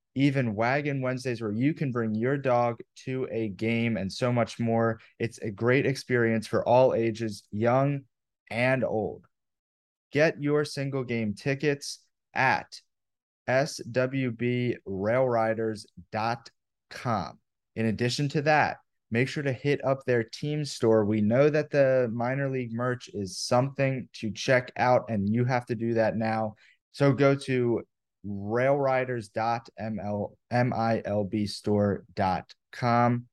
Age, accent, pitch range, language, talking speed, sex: 30-49, American, 110-125 Hz, English, 120 wpm, male